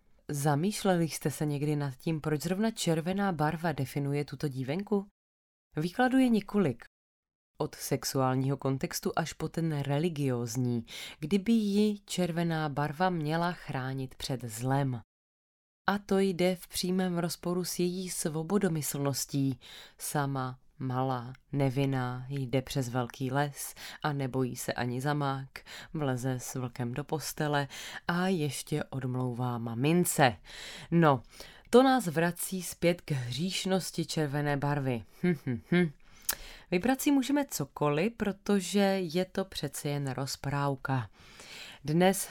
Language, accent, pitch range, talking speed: Czech, native, 135-180 Hz, 120 wpm